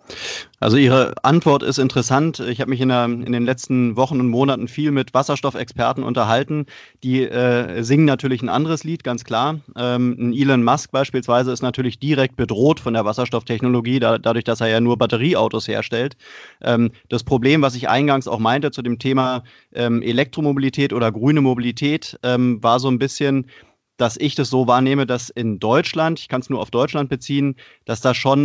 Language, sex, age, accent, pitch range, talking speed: German, male, 30-49, German, 120-145 Hz, 185 wpm